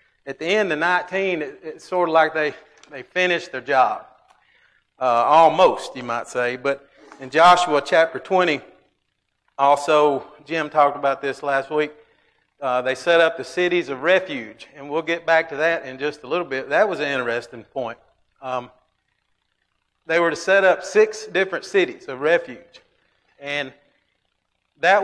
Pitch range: 140-175 Hz